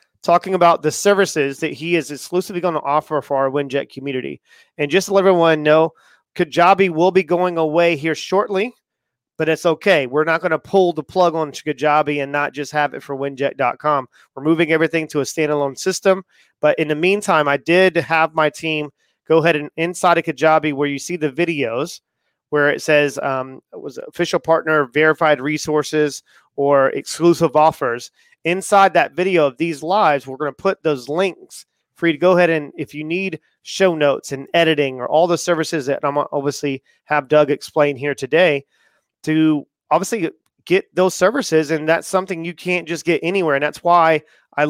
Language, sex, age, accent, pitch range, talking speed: English, male, 30-49, American, 150-175 Hz, 185 wpm